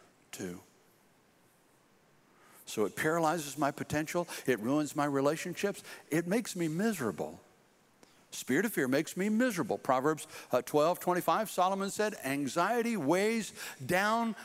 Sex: male